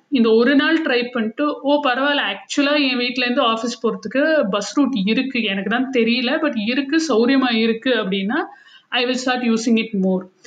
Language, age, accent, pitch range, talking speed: Tamil, 50-69, native, 220-270 Hz, 165 wpm